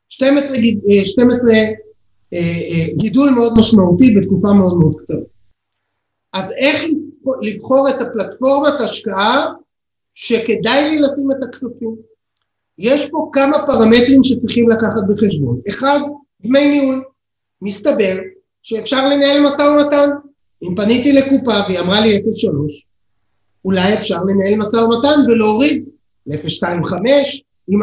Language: Hebrew